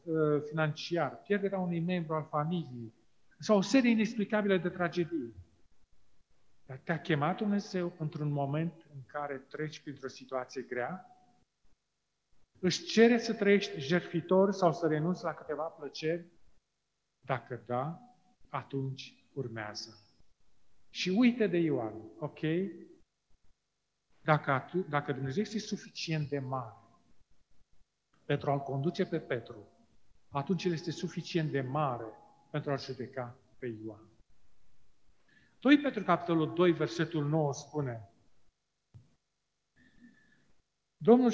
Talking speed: 110 wpm